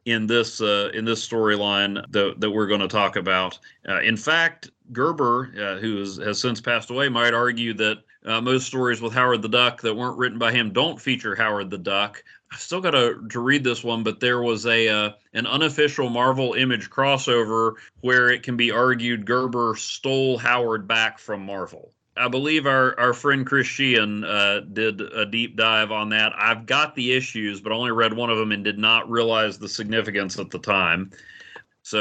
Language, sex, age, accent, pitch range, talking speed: English, male, 40-59, American, 110-125 Hz, 195 wpm